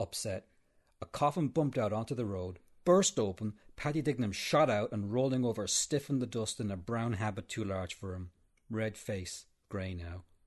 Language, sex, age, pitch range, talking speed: English, male, 40-59, 90-110 Hz, 185 wpm